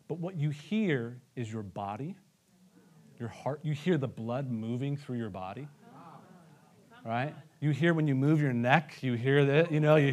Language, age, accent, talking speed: English, 40-59, American, 185 wpm